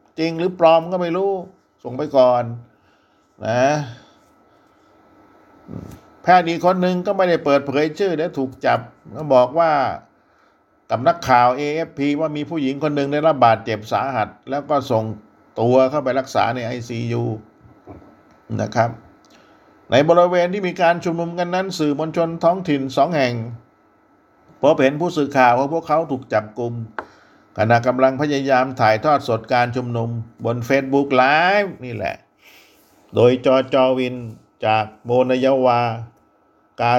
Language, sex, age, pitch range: Thai, male, 60-79, 115-160 Hz